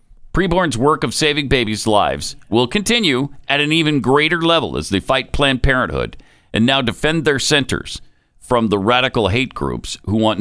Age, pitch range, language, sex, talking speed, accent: 50-69, 100-140 Hz, English, male, 175 wpm, American